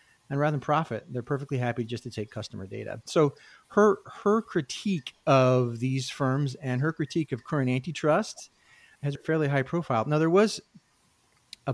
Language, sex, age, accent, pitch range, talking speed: English, male, 40-59, American, 110-145 Hz, 175 wpm